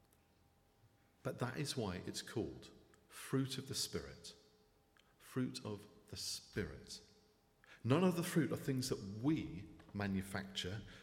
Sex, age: male, 50-69